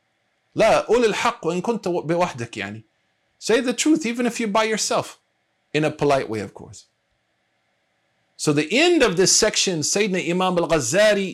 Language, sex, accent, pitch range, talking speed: English, male, American, 155-210 Hz, 150 wpm